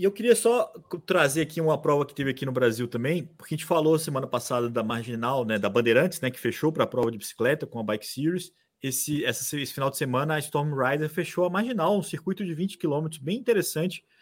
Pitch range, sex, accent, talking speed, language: 130-175 Hz, male, Brazilian, 230 wpm, Portuguese